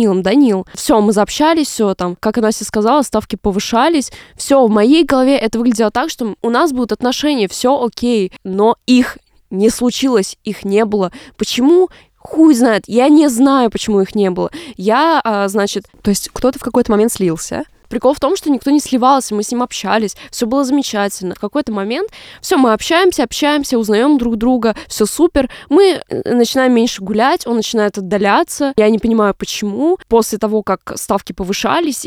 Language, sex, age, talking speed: Russian, female, 20-39, 180 wpm